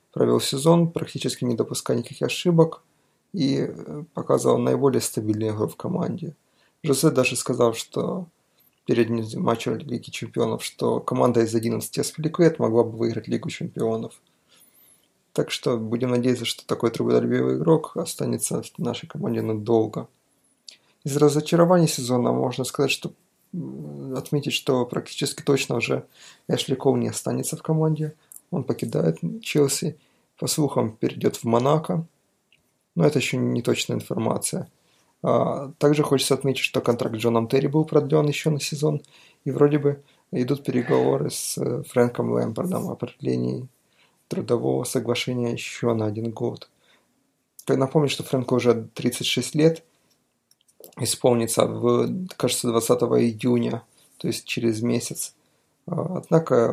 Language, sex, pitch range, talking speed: Russian, male, 115-145 Hz, 125 wpm